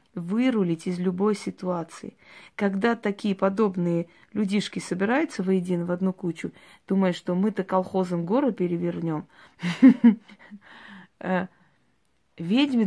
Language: Russian